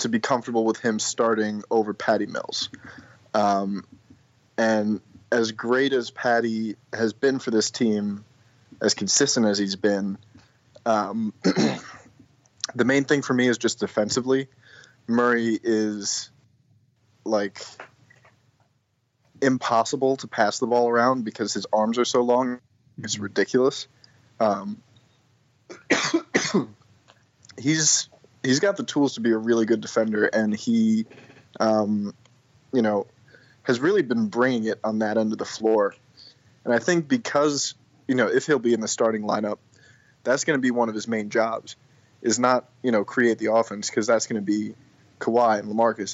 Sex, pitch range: male, 110-130 Hz